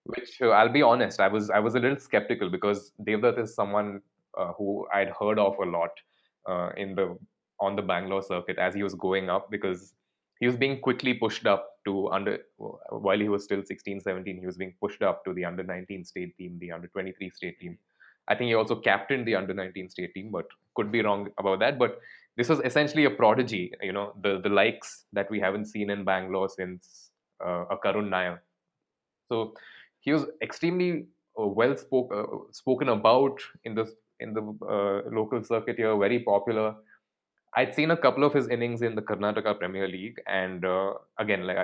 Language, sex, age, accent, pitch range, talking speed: English, male, 20-39, Indian, 95-110 Hz, 200 wpm